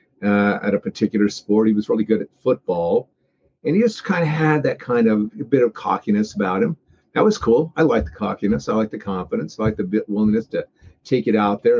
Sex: male